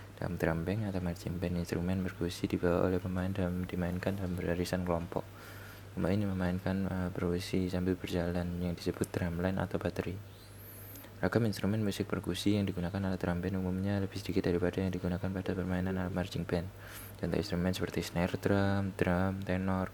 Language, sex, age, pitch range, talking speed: Indonesian, male, 20-39, 90-100 Hz, 155 wpm